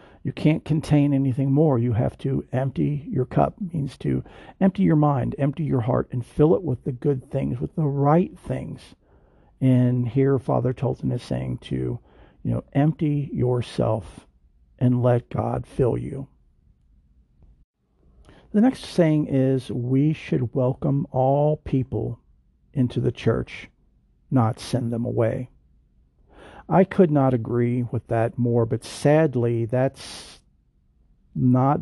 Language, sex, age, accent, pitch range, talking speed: English, male, 50-69, American, 115-140 Hz, 140 wpm